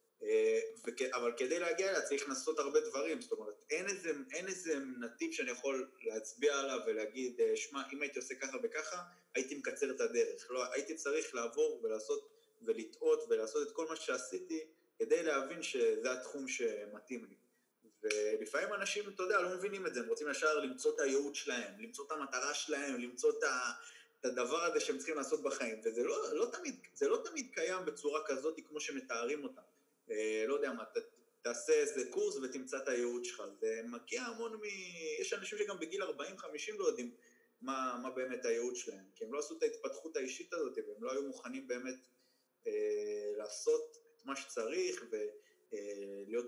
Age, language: 20-39, Hebrew